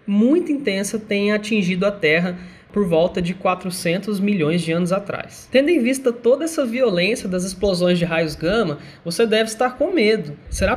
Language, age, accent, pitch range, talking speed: Portuguese, 20-39, Brazilian, 180-235 Hz, 175 wpm